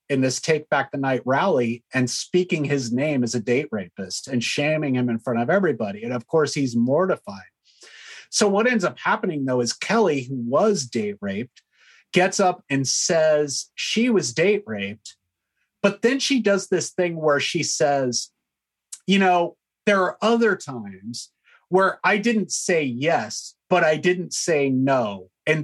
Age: 30-49